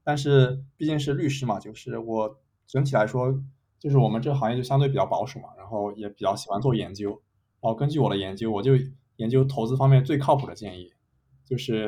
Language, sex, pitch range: Chinese, male, 105-135 Hz